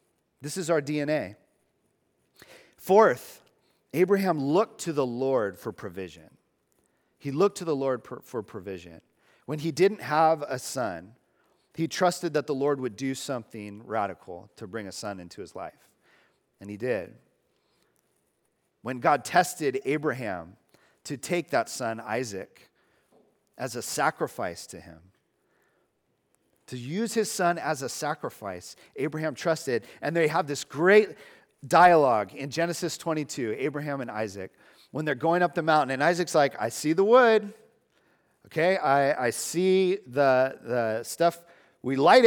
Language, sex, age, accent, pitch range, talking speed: English, male, 40-59, American, 115-175 Hz, 145 wpm